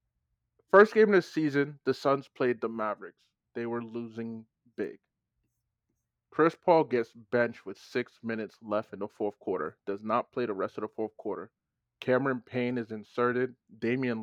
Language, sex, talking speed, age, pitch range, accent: English, male, 170 wpm, 20-39, 110-130 Hz, American